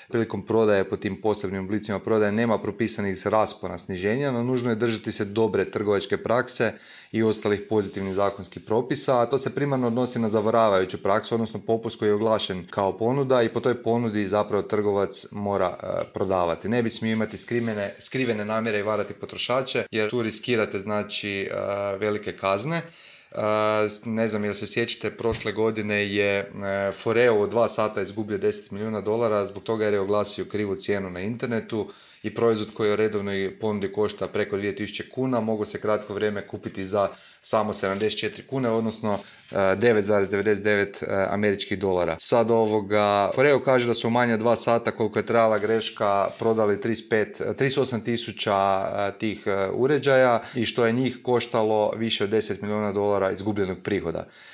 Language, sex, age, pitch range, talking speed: Croatian, male, 30-49, 100-115 Hz, 160 wpm